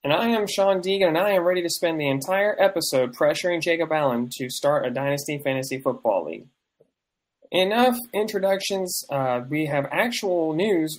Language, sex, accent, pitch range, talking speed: English, male, American, 135-185 Hz, 170 wpm